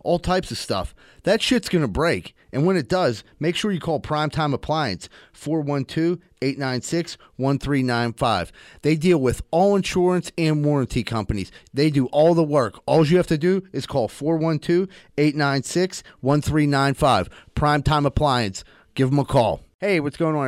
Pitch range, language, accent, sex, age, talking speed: 125-160 Hz, English, American, male, 30-49, 150 wpm